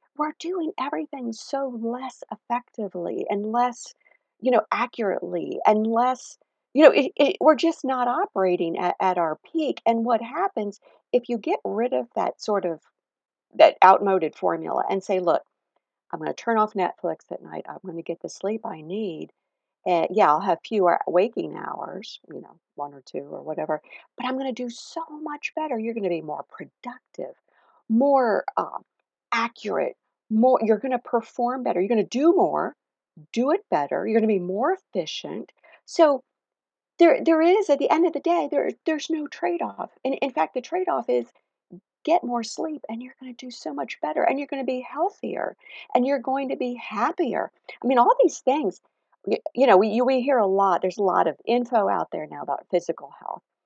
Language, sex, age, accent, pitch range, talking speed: English, female, 50-69, American, 195-285 Hz, 195 wpm